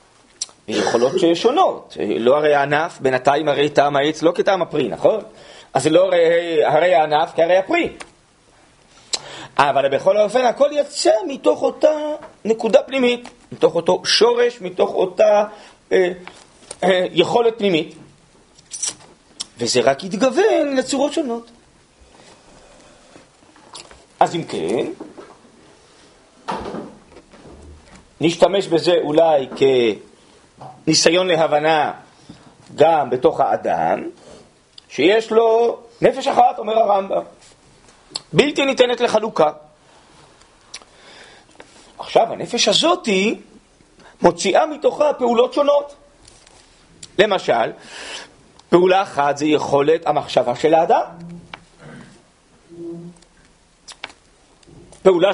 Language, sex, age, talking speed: Hebrew, male, 40-59, 90 wpm